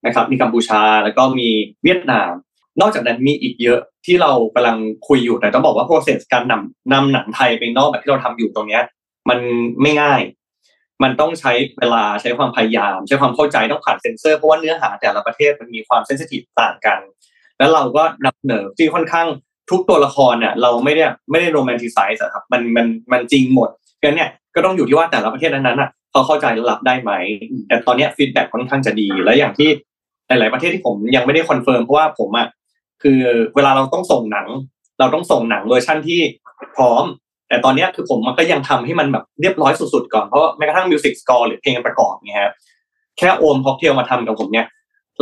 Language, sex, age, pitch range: Thai, male, 20-39, 120-155 Hz